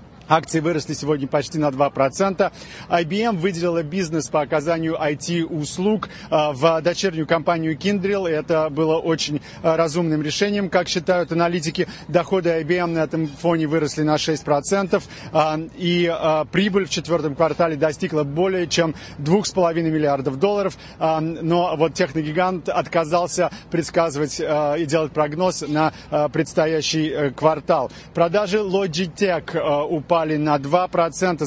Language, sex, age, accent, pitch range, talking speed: Russian, male, 30-49, native, 155-180 Hz, 115 wpm